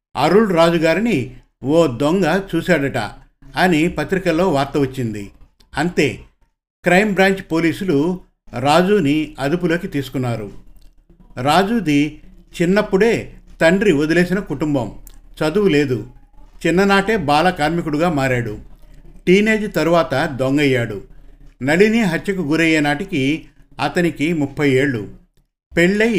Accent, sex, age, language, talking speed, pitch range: native, male, 50-69, Telugu, 85 wpm, 135-175 Hz